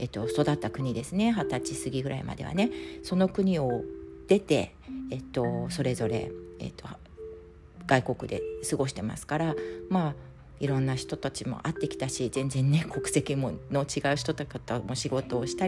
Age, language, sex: 40-59, Japanese, female